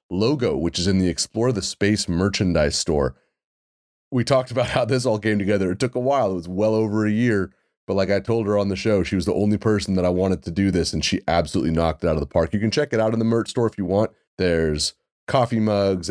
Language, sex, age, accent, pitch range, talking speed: English, male, 30-49, American, 80-105 Hz, 265 wpm